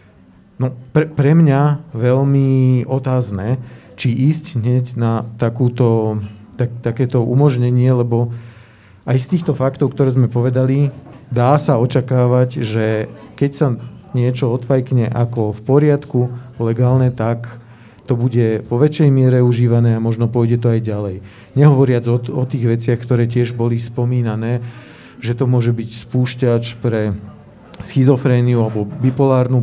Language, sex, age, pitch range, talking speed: Slovak, male, 40-59, 120-135 Hz, 130 wpm